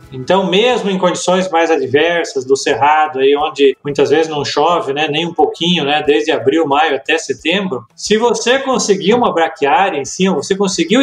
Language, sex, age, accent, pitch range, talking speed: Portuguese, male, 20-39, Brazilian, 160-210 Hz, 180 wpm